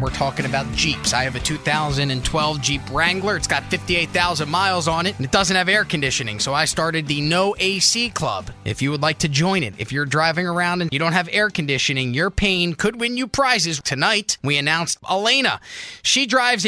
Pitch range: 150-205 Hz